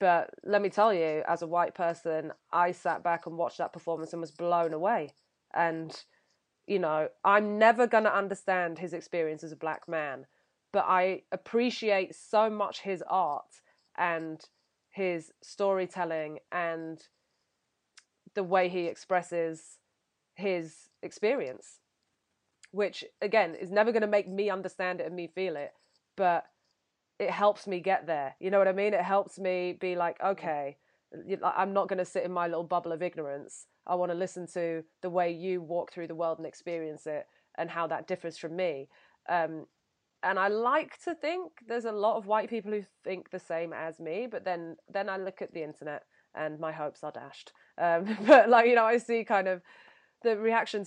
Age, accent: 20-39, British